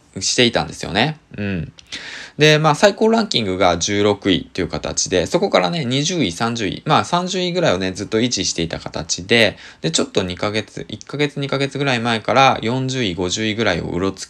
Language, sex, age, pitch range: Japanese, male, 20-39, 95-140 Hz